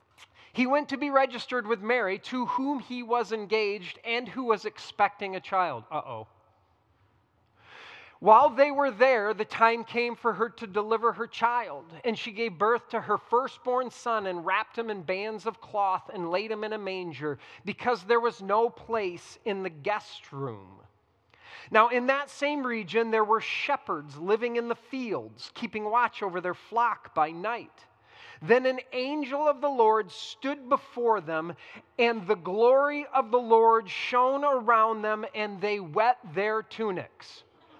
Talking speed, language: 165 wpm, English